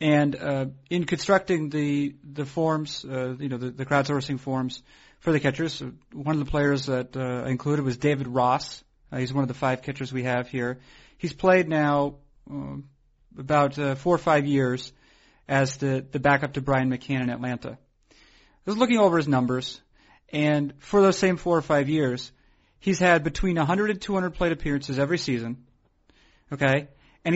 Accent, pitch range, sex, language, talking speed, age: American, 130-155 Hz, male, English, 180 wpm, 40-59